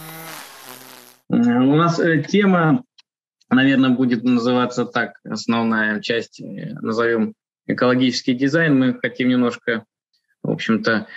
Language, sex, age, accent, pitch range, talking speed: Russian, male, 20-39, native, 110-140 Hz, 90 wpm